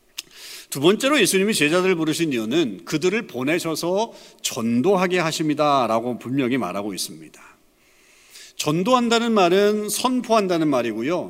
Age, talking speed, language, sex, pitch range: 40-59, 90 wpm, English, male, 125-205 Hz